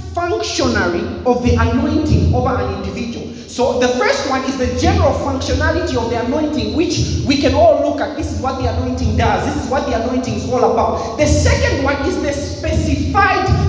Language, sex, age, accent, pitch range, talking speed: English, male, 30-49, South African, 245-325 Hz, 195 wpm